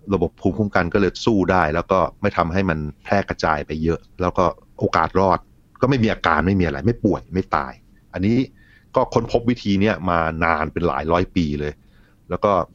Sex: male